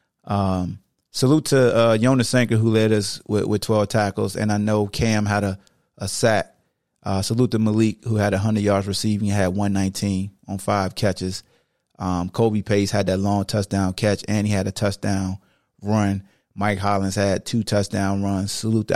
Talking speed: 185 wpm